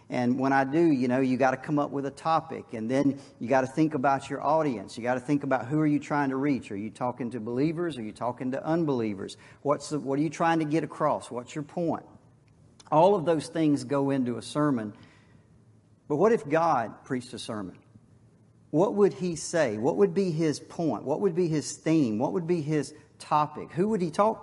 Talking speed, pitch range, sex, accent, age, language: 230 wpm, 120-155 Hz, male, American, 50-69, English